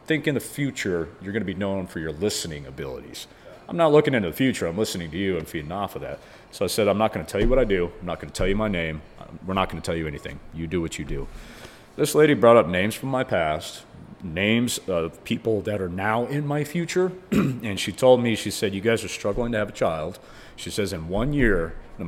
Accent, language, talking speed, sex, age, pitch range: American, English, 265 wpm, male, 40-59, 85-115 Hz